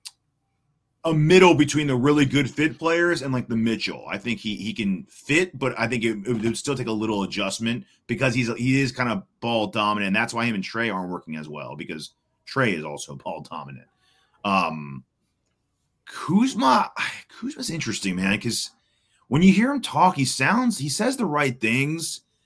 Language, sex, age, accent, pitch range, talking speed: English, male, 30-49, American, 120-195 Hz, 190 wpm